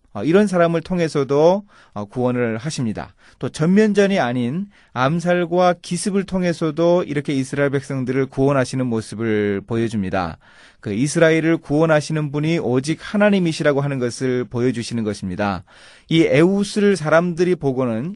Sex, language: male, Korean